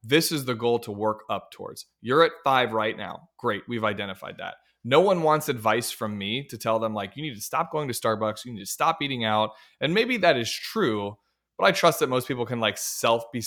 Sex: male